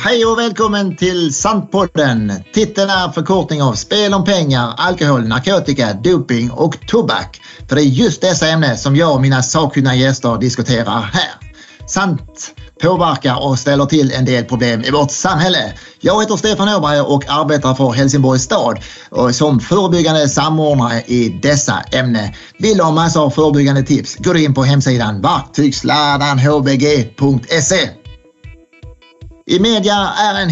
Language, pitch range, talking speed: Swedish, 130-180 Hz, 145 wpm